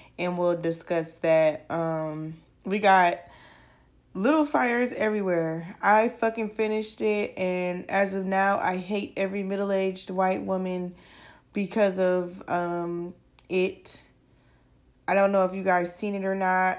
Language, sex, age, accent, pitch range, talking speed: English, female, 10-29, American, 175-210 Hz, 135 wpm